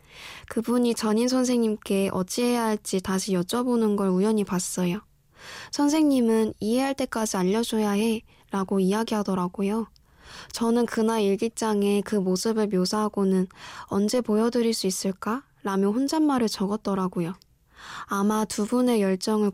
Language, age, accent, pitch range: Korean, 10-29, native, 195-235 Hz